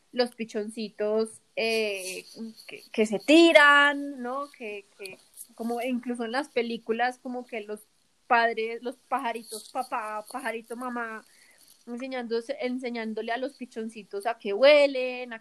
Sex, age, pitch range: female, 20-39, 225-255 Hz